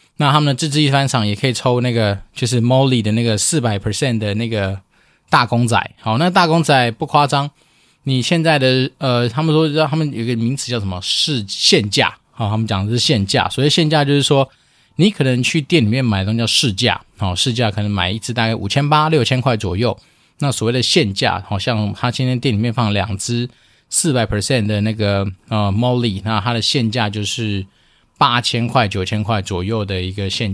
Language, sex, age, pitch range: Chinese, male, 20-39, 110-140 Hz